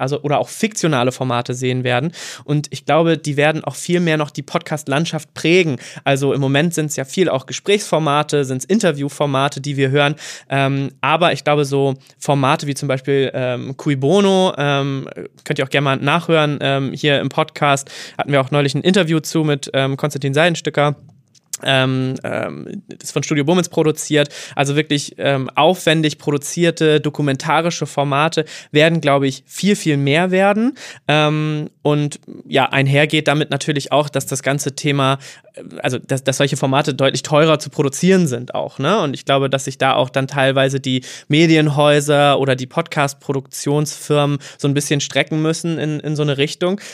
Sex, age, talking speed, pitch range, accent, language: male, 20-39, 170 wpm, 135-160 Hz, German, German